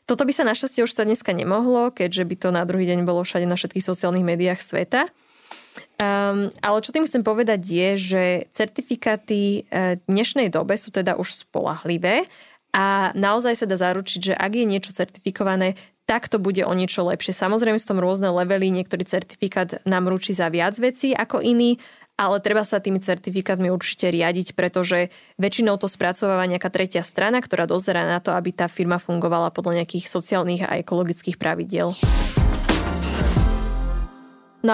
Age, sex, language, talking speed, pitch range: 20-39, female, Slovak, 165 wpm, 180-225 Hz